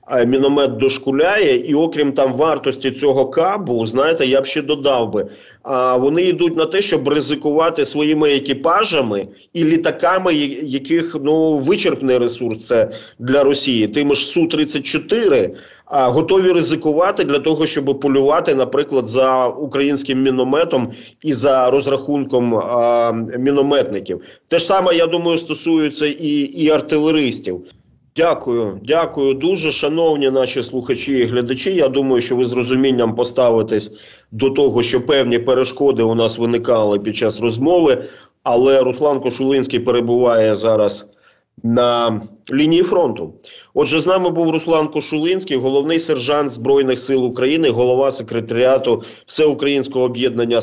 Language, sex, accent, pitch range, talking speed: Ukrainian, male, native, 125-150 Hz, 125 wpm